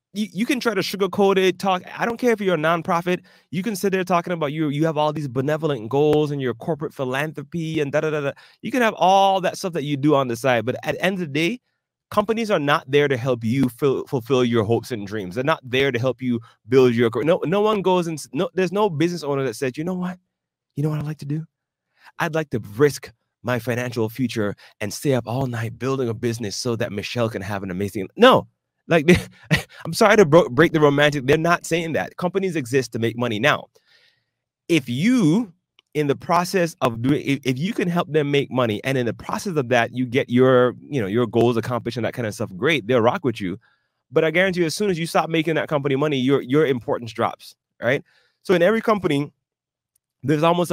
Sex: male